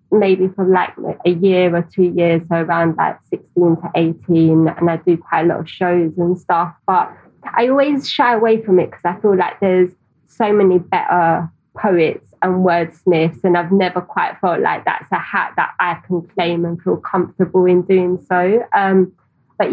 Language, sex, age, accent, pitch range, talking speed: English, female, 20-39, British, 170-190 Hz, 190 wpm